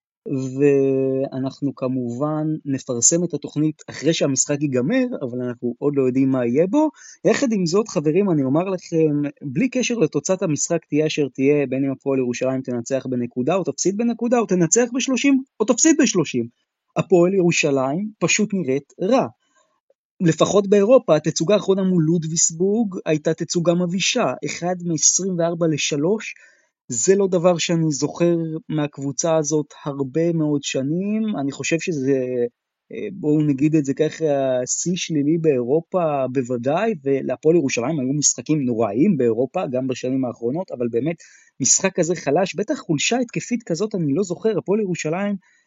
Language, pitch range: Hebrew, 135-185 Hz